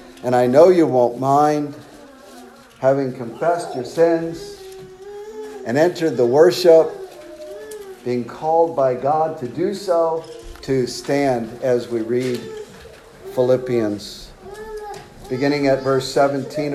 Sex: male